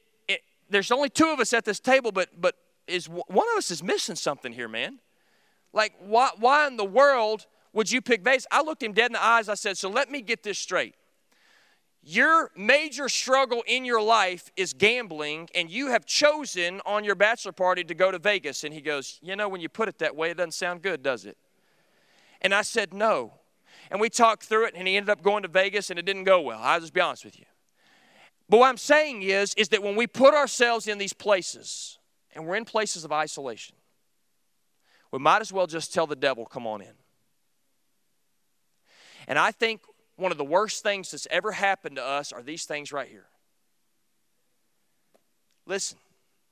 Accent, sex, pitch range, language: American, male, 160-225 Hz, English